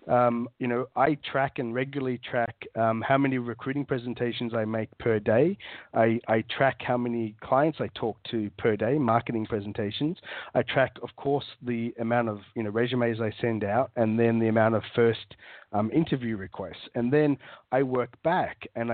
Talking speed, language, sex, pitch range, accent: 185 wpm, English, male, 115-145 Hz, Australian